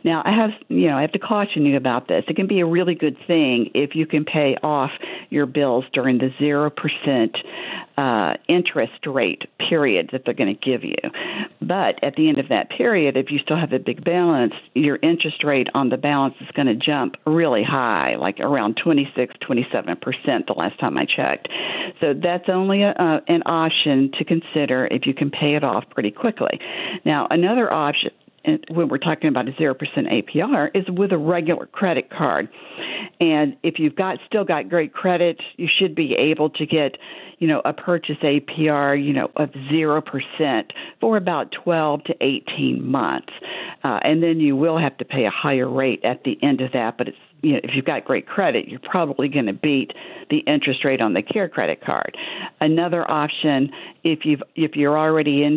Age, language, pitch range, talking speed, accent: 50-69, English, 145-170 Hz, 195 wpm, American